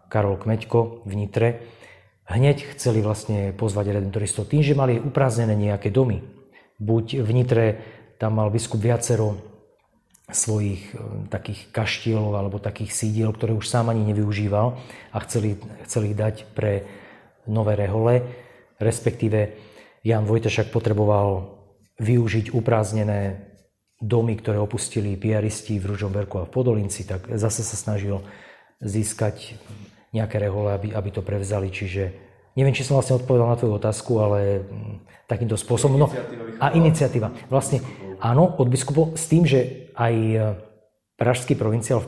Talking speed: 130 wpm